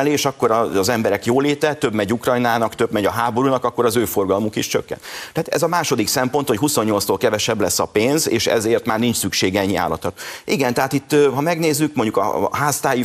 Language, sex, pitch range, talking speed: Hungarian, male, 110-135 Hz, 200 wpm